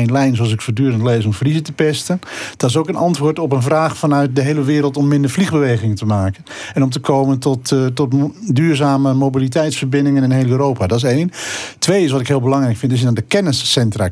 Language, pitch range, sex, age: Dutch, 125-150 Hz, male, 50-69